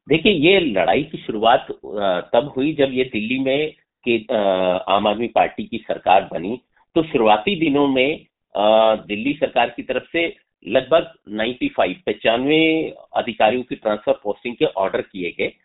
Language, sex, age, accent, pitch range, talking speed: Hindi, male, 50-69, native, 110-160 Hz, 145 wpm